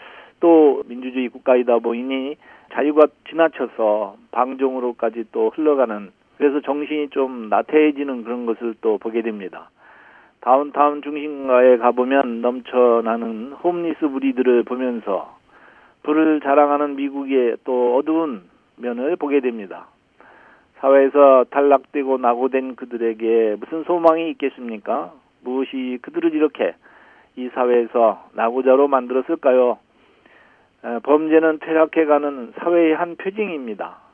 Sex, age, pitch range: male, 40-59, 125-150 Hz